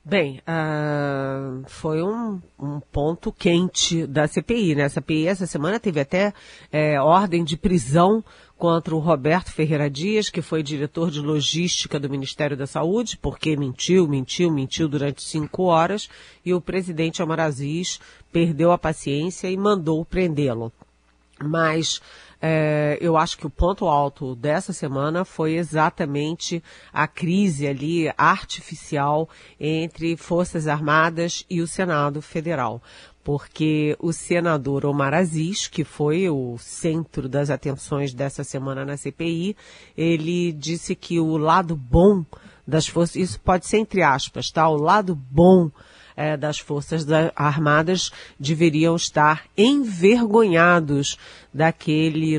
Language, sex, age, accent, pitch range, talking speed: Portuguese, female, 40-59, Brazilian, 145-175 Hz, 130 wpm